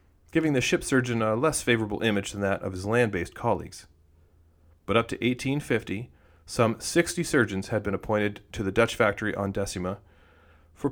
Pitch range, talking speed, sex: 85-125 Hz, 170 wpm, male